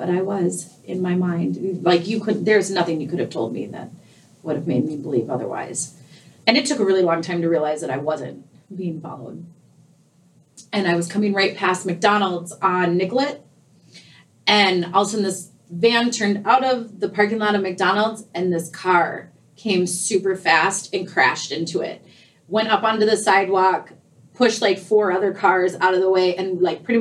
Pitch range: 170-205 Hz